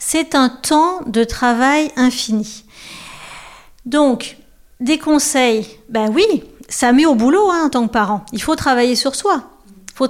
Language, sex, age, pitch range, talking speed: French, female, 40-59, 220-275 Hz, 155 wpm